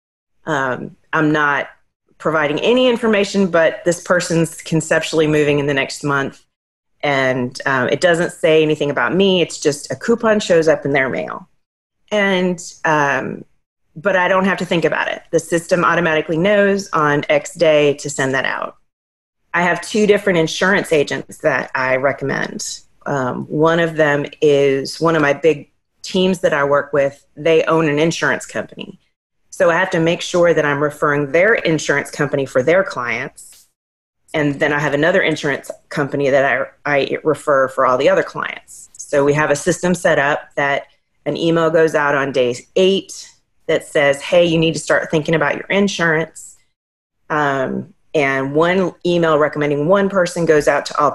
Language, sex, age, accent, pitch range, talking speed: English, female, 30-49, American, 145-175 Hz, 175 wpm